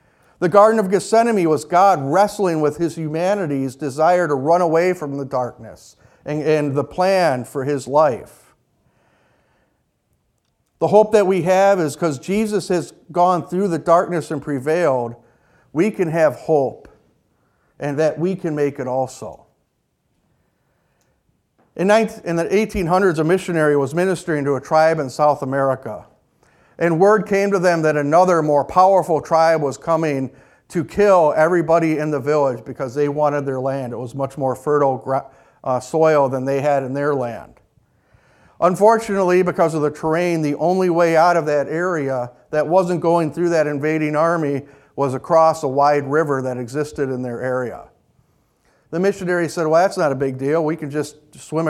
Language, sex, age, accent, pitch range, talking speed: English, male, 50-69, American, 140-175 Hz, 165 wpm